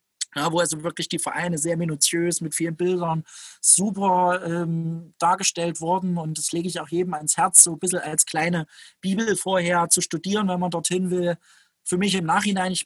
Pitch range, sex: 165-185 Hz, male